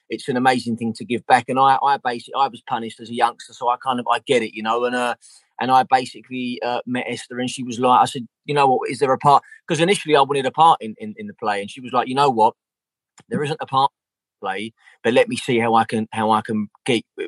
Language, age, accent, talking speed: English, 20-39, British, 290 wpm